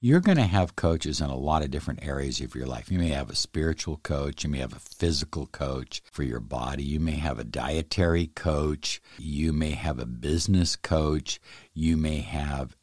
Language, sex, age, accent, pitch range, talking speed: English, male, 60-79, American, 75-95 Hz, 205 wpm